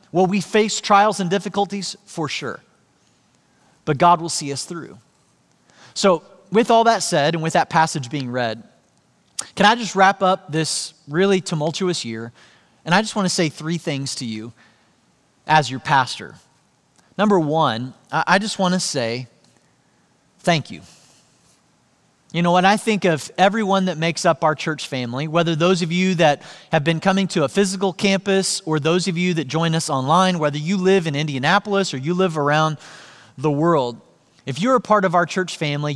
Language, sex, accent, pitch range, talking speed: English, male, American, 140-190 Hz, 175 wpm